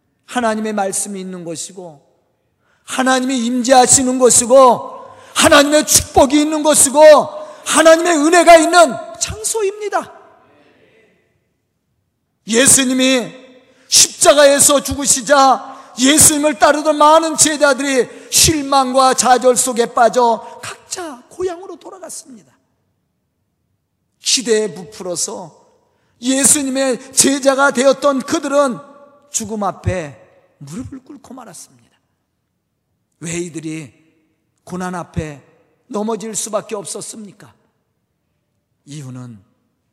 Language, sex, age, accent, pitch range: Korean, male, 40-59, native, 170-280 Hz